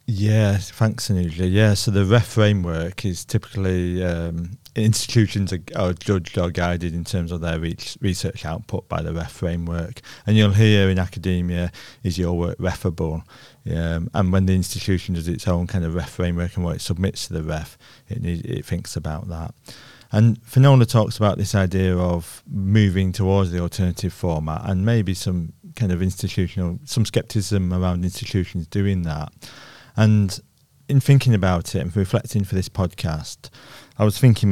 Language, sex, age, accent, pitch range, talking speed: English, male, 40-59, British, 90-110 Hz, 170 wpm